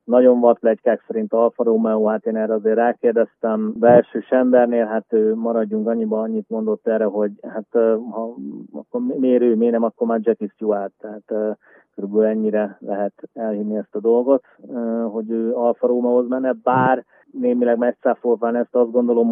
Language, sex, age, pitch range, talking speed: Hungarian, male, 30-49, 110-125 Hz, 160 wpm